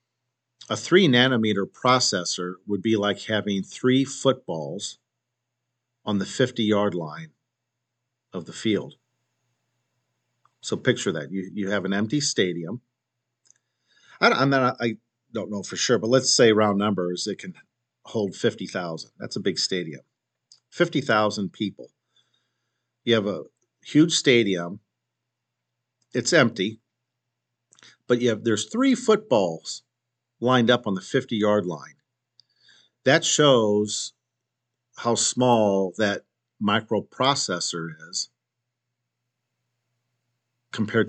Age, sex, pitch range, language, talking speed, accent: 50-69, male, 105-125 Hz, English, 110 wpm, American